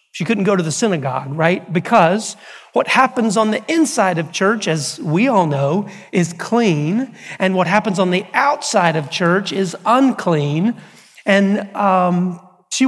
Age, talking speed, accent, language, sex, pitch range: 40-59, 160 wpm, American, English, male, 160-200 Hz